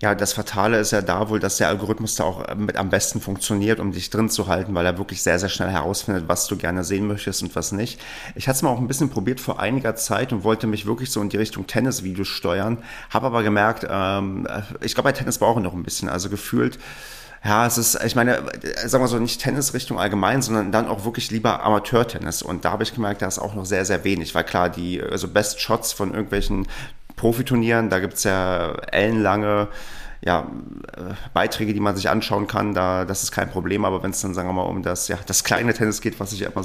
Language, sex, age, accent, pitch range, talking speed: German, male, 30-49, German, 90-110 Hz, 230 wpm